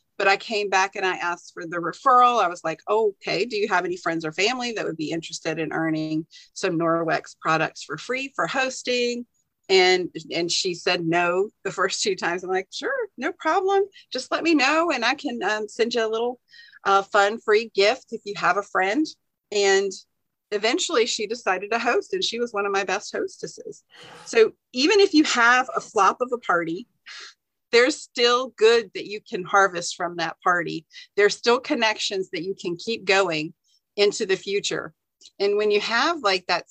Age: 40-59